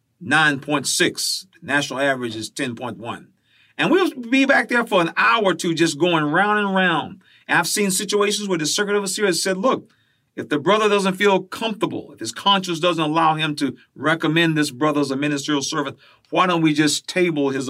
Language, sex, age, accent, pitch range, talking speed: English, male, 50-69, American, 135-185 Hz, 195 wpm